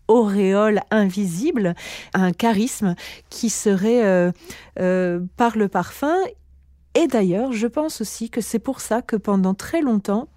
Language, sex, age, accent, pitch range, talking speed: French, female, 40-59, French, 185-230 Hz, 140 wpm